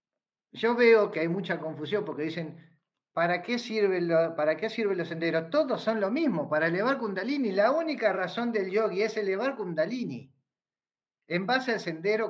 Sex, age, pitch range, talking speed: male, 40-59, 155-220 Hz, 170 wpm